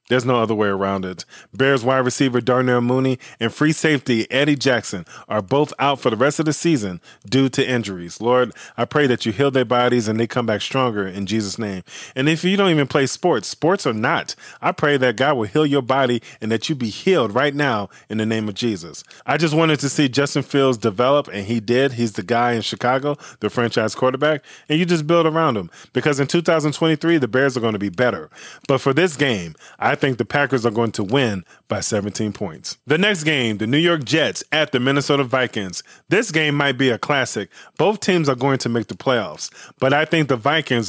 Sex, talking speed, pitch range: male, 225 wpm, 115-150 Hz